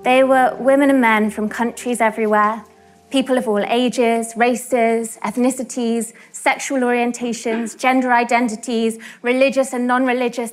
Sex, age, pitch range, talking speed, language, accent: female, 20-39, 205-245 Hz, 120 wpm, English, British